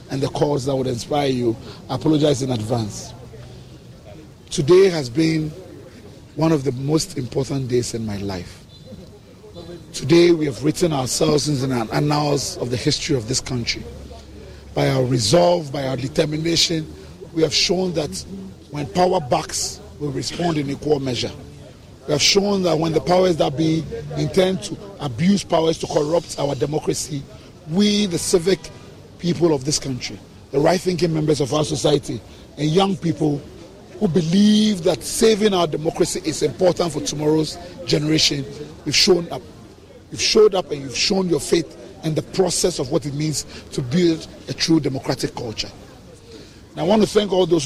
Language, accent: English, Nigerian